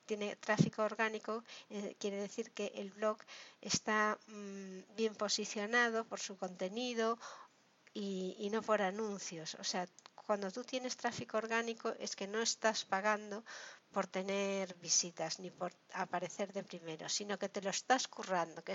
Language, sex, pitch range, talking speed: Spanish, female, 190-230 Hz, 150 wpm